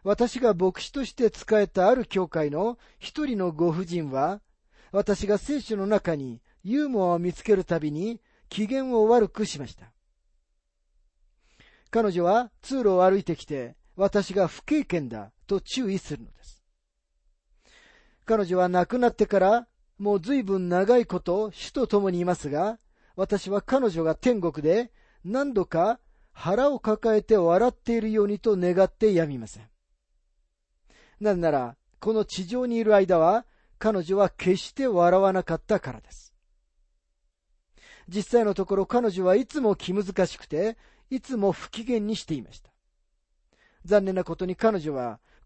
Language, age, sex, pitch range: Japanese, 40-59, male, 150-220 Hz